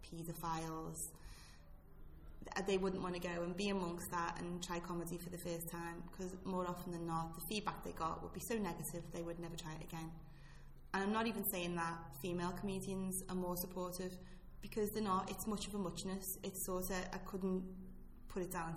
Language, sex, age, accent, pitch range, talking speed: English, female, 20-39, British, 170-200 Hz, 200 wpm